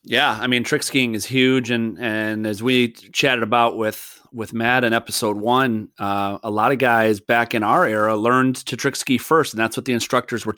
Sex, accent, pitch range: male, American, 110-135 Hz